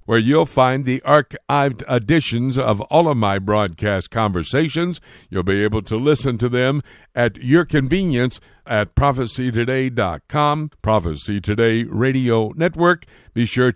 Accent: American